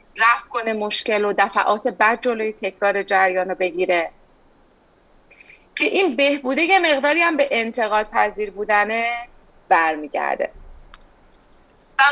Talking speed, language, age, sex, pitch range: 115 wpm, English, 30-49, female, 195-255 Hz